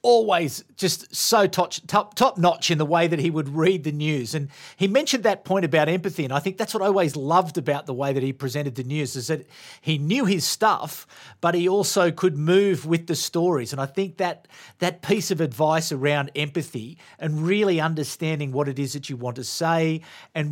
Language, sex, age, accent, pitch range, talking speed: English, male, 40-59, Australian, 140-175 Hz, 220 wpm